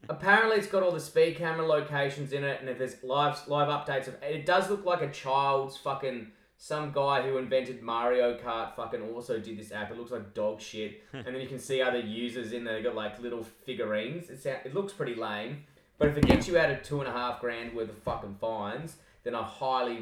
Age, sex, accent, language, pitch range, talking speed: 20-39, male, Australian, English, 115-145 Hz, 235 wpm